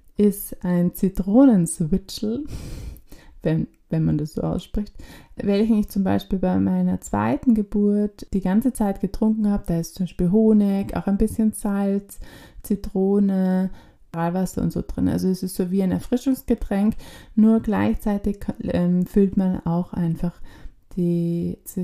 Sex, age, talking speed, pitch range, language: female, 20-39, 140 wpm, 175-220 Hz, German